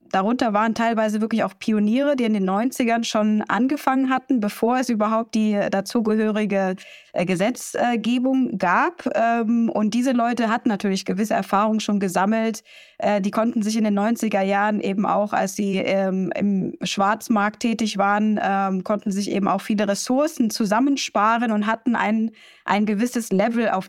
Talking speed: 145 wpm